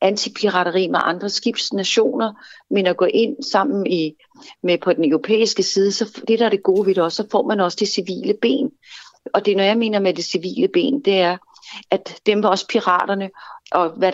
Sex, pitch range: female, 180-215 Hz